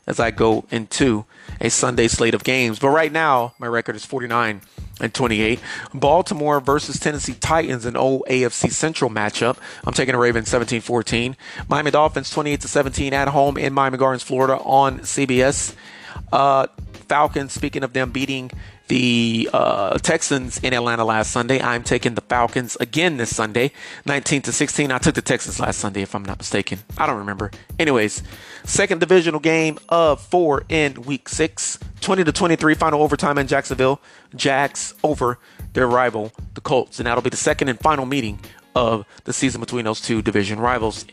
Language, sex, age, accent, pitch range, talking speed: English, male, 30-49, American, 115-145 Hz, 160 wpm